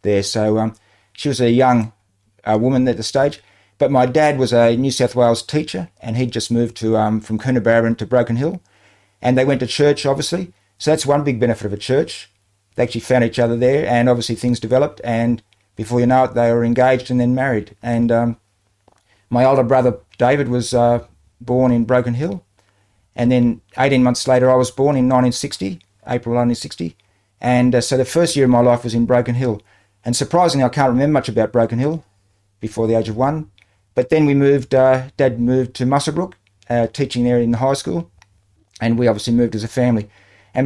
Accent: Australian